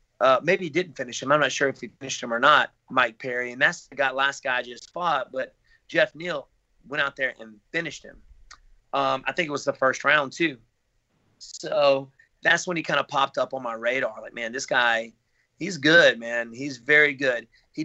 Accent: American